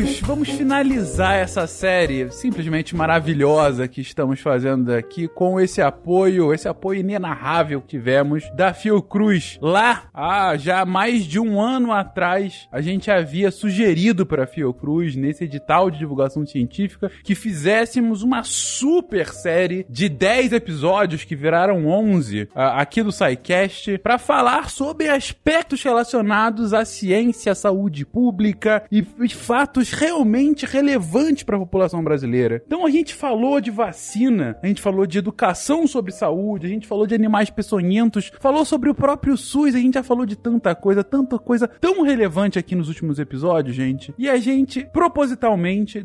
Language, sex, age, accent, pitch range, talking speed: Portuguese, male, 20-39, Brazilian, 175-245 Hz, 150 wpm